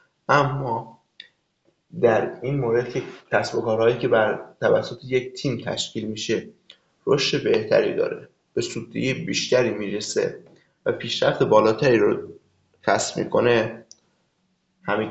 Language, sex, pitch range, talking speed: Persian, male, 115-140 Hz, 110 wpm